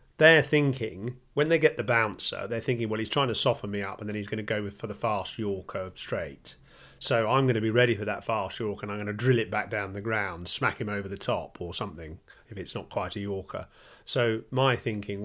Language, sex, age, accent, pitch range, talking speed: English, male, 30-49, British, 110-145 Hz, 250 wpm